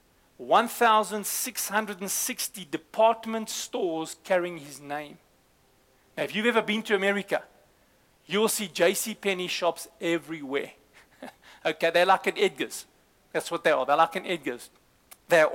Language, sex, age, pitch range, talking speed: English, male, 40-59, 165-210 Hz, 125 wpm